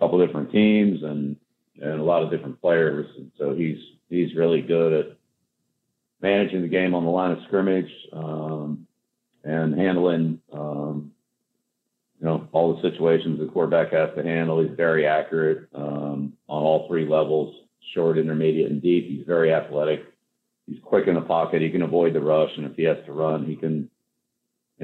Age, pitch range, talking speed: 50-69, 75-80 Hz, 180 wpm